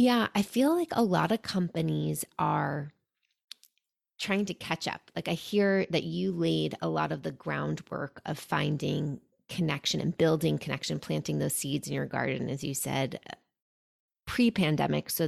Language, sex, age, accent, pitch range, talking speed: English, female, 20-39, American, 155-195 Hz, 165 wpm